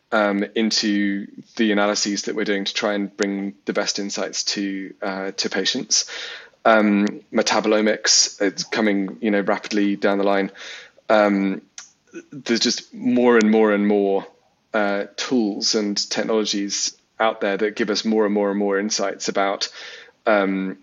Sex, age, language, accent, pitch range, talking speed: male, 30-49, English, British, 100-110 Hz, 150 wpm